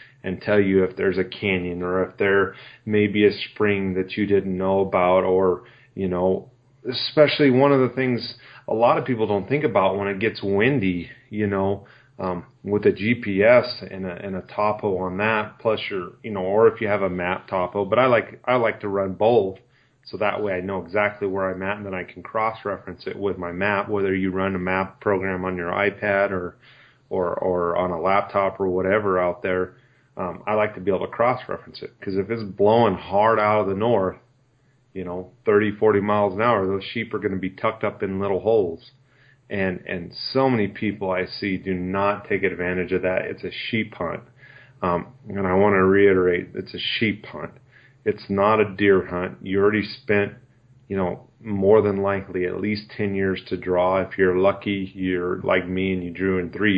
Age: 30-49